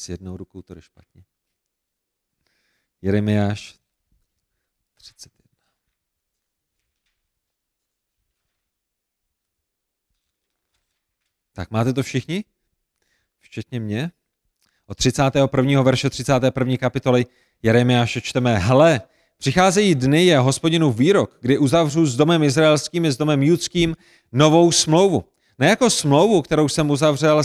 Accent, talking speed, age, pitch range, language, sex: native, 95 wpm, 40-59, 125-165 Hz, Czech, male